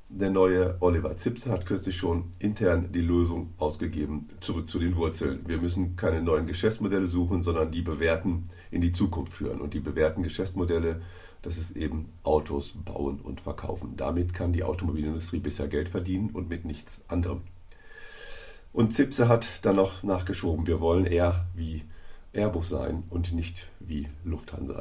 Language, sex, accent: German, male, German